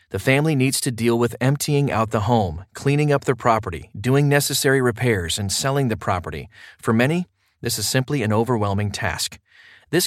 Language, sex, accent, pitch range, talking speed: English, male, American, 110-140 Hz, 180 wpm